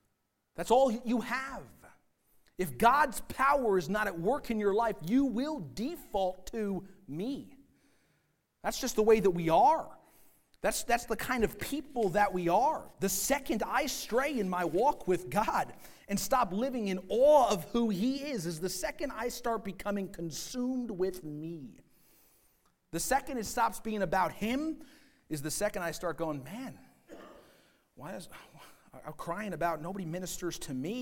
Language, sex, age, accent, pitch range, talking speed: English, male, 40-59, American, 170-255 Hz, 165 wpm